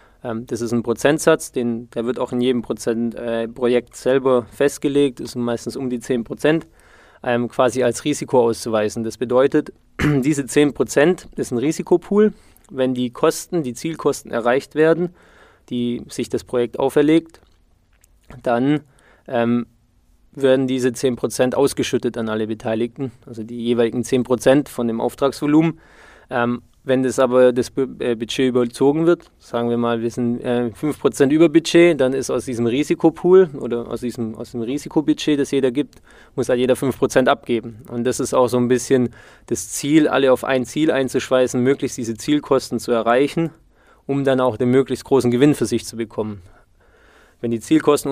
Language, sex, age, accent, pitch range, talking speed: German, male, 20-39, German, 120-140 Hz, 160 wpm